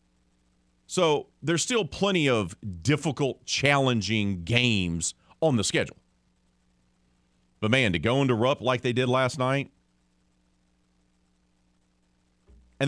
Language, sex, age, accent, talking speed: English, male, 40-59, American, 105 wpm